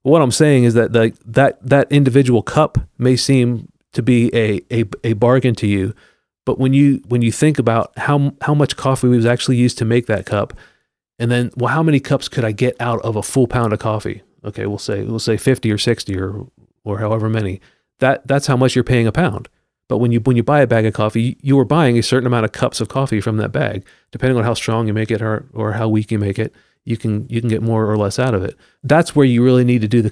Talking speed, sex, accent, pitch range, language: 260 wpm, male, American, 110-130 Hz, English